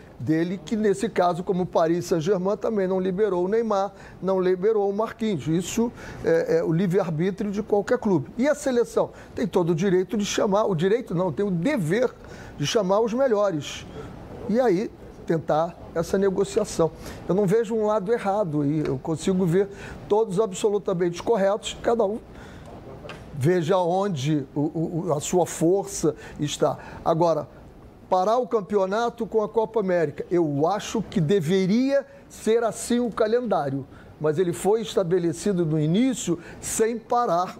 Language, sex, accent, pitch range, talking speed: Portuguese, male, Brazilian, 165-220 Hz, 150 wpm